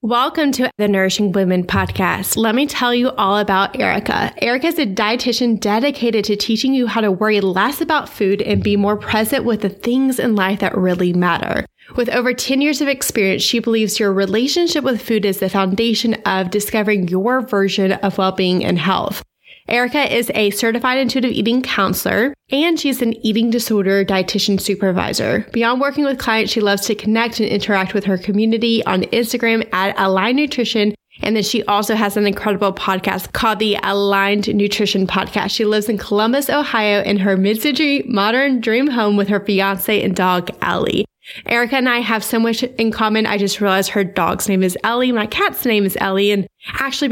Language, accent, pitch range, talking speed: English, American, 200-240 Hz, 185 wpm